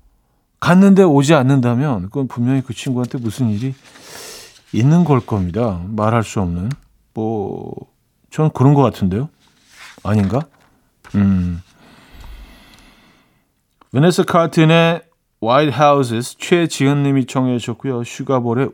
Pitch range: 115-155 Hz